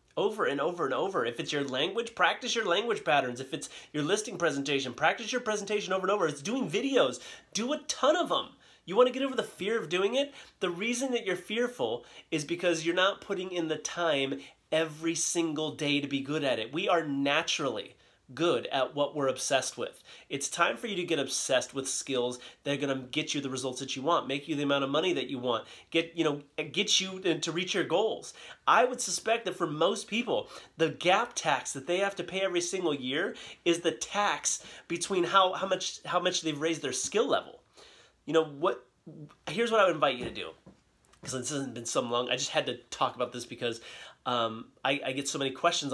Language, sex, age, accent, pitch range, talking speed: English, male, 30-49, American, 140-195 Hz, 225 wpm